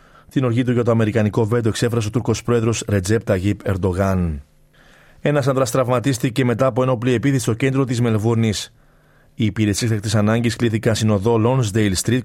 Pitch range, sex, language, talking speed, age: 110-135 Hz, male, Greek, 155 wpm, 30-49